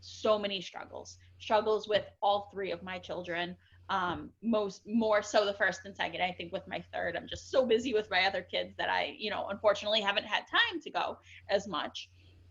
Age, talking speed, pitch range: 20-39, 205 wpm, 170-265 Hz